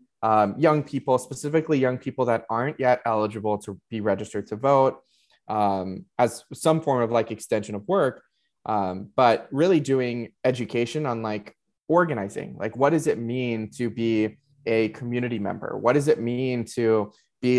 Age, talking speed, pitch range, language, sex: 20-39, 165 wpm, 110-140 Hz, English, male